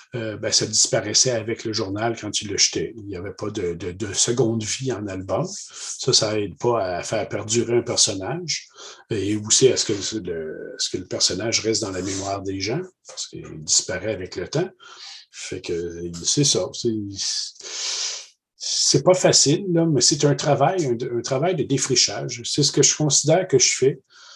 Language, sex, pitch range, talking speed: French, male, 110-140 Hz, 190 wpm